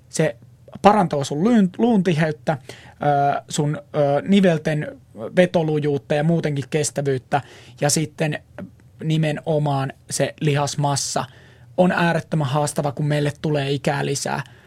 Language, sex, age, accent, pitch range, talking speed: Finnish, male, 30-49, native, 135-170 Hz, 95 wpm